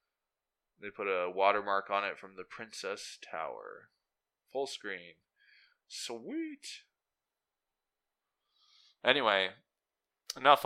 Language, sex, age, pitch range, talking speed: English, male, 20-39, 95-130 Hz, 85 wpm